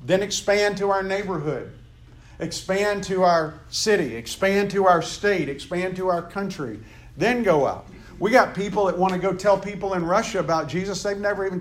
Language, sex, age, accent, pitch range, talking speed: English, male, 50-69, American, 125-200 Hz, 185 wpm